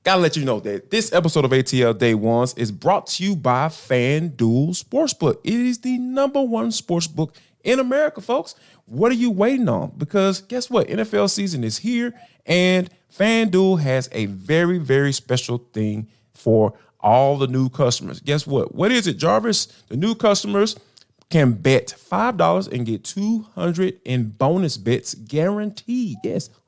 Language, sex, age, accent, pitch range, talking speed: English, male, 30-49, American, 130-215 Hz, 165 wpm